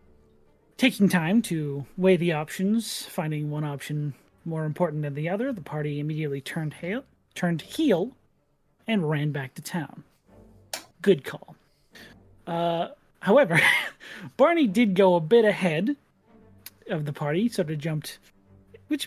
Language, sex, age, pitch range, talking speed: English, male, 30-49, 135-185 Hz, 130 wpm